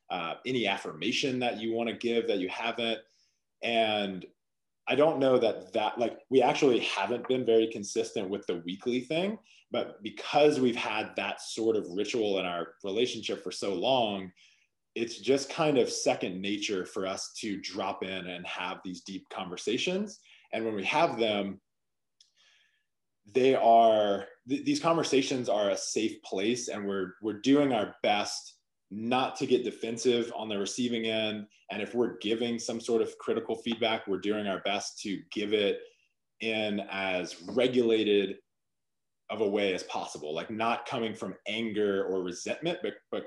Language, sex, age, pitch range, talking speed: English, male, 20-39, 100-125 Hz, 165 wpm